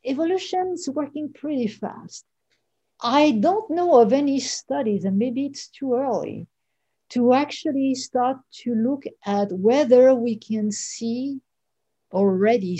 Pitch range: 190-260 Hz